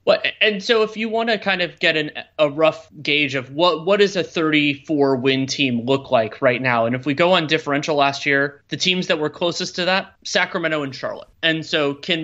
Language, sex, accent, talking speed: English, male, American, 230 wpm